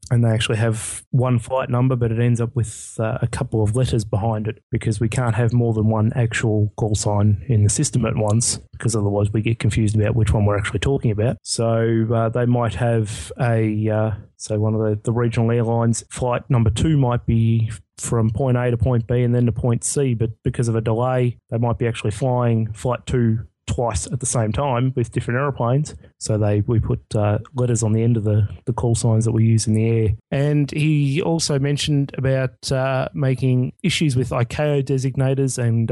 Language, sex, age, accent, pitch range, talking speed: English, male, 20-39, Australian, 110-125 Hz, 215 wpm